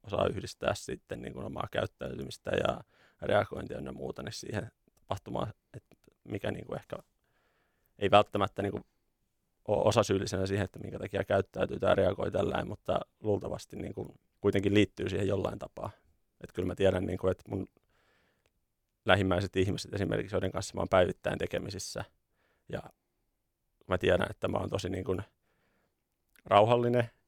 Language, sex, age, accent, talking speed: Finnish, male, 30-49, native, 140 wpm